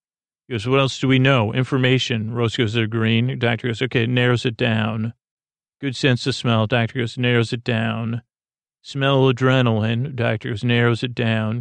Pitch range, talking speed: 115-130 Hz, 175 wpm